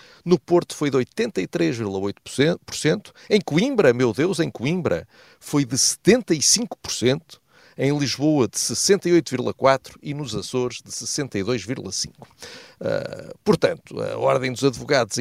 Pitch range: 110-145 Hz